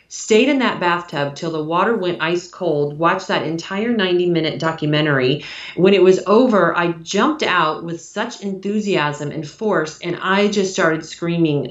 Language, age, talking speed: English, 40-59, 170 wpm